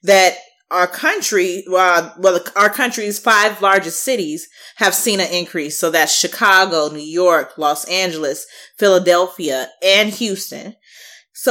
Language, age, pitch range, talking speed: English, 20-39, 175-235 Hz, 130 wpm